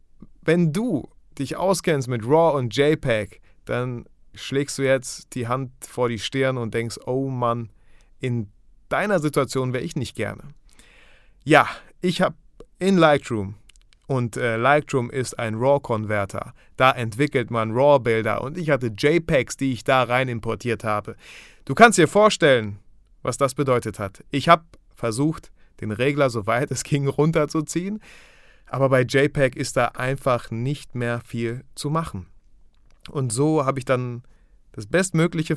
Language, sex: German, male